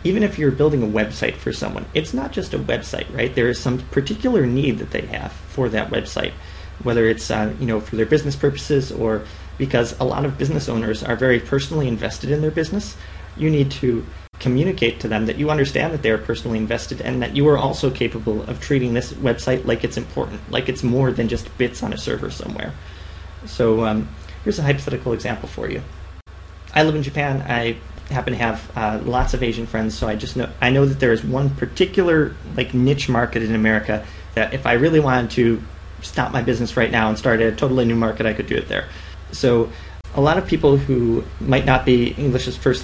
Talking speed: 215 wpm